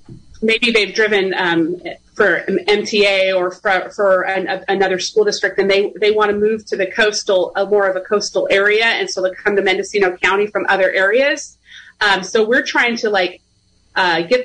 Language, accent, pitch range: English, American, 195-245 Hz